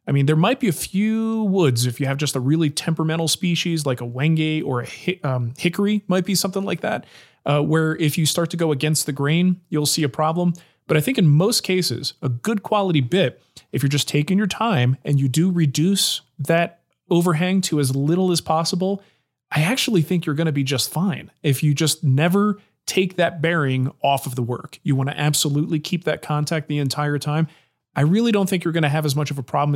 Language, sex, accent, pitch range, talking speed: English, male, American, 140-175 Hz, 225 wpm